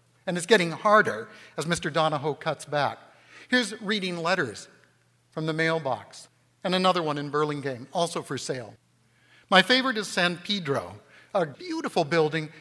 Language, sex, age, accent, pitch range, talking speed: English, male, 60-79, American, 150-185 Hz, 150 wpm